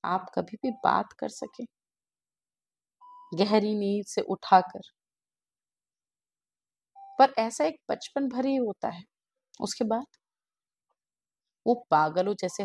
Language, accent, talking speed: Hindi, native, 105 wpm